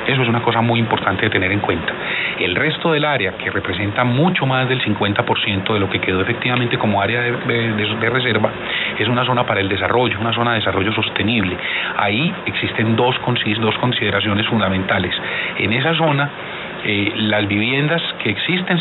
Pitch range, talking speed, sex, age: 105-125 Hz, 180 wpm, male, 40-59